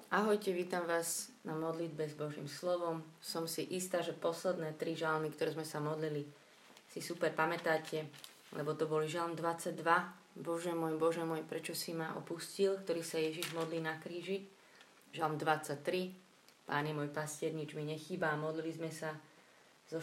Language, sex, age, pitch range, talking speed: Slovak, female, 20-39, 155-180 Hz, 160 wpm